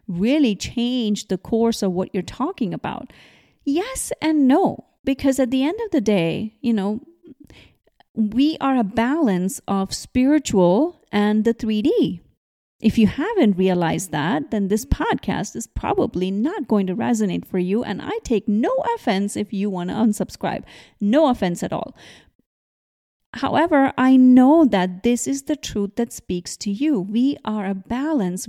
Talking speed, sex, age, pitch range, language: 160 wpm, female, 30-49, 195-265 Hz, English